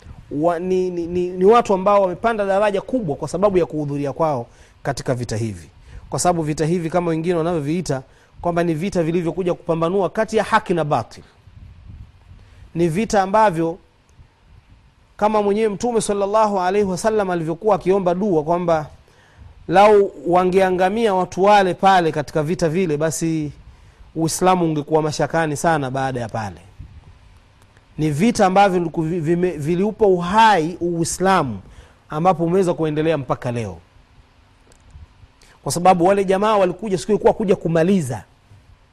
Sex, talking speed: male, 130 wpm